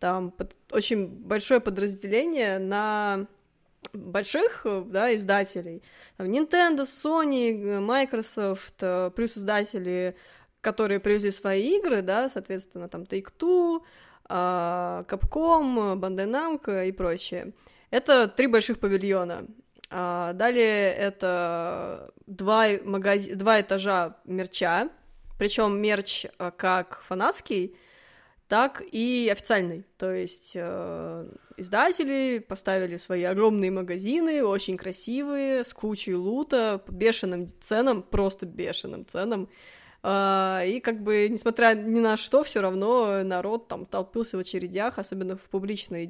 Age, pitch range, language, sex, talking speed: 20-39, 185-230 Hz, Russian, female, 105 wpm